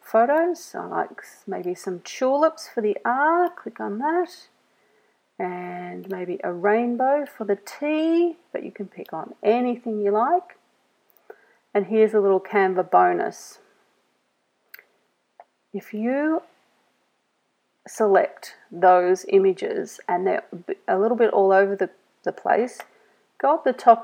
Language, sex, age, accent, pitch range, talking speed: English, female, 40-59, Australian, 190-280 Hz, 125 wpm